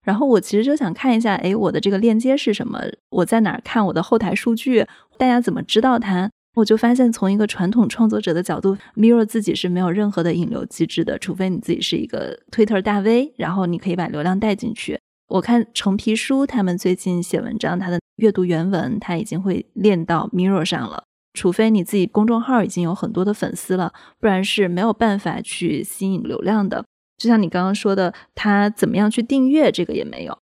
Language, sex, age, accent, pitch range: Chinese, female, 20-39, native, 185-225 Hz